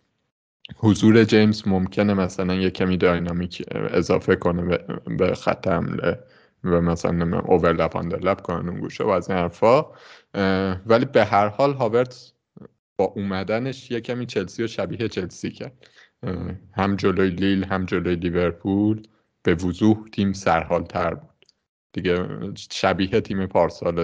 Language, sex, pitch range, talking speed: Persian, male, 95-115 Hz, 130 wpm